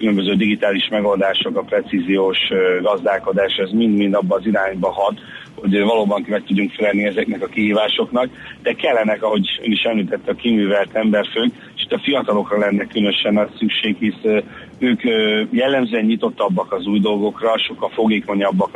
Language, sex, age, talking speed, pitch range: Hungarian, male, 40-59, 145 wpm, 100-115 Hz